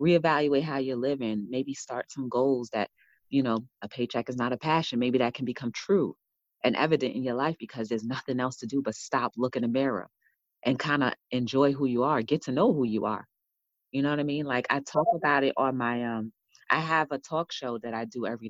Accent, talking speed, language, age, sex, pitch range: American, 240 wpm, English, 30-49, female, 120-155 Hz